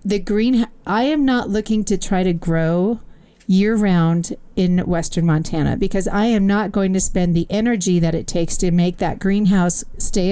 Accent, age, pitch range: American, 40-59, 175-210 Hz